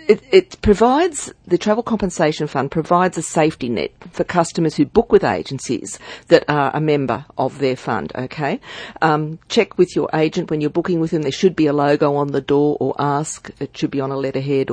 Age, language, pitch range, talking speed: 50-69, English, 140-175 Hz, 210 wpm